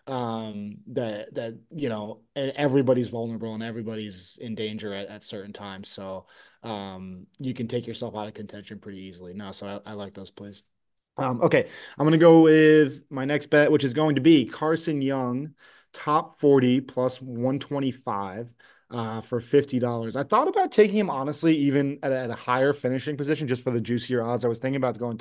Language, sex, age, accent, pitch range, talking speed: English, male, 20-39, American, 115-145 Hz, 195 wpm